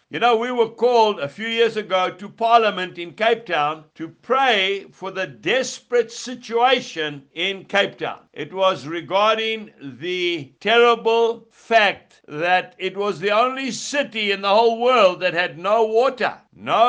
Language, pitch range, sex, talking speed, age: English, 195-250 Hz, male, 155 wpm, 60-79